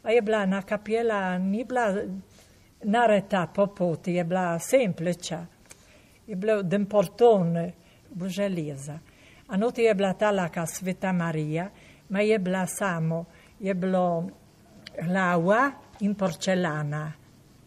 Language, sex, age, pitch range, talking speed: Italian, female, 60-79, 170-220 Hz, 90 wpm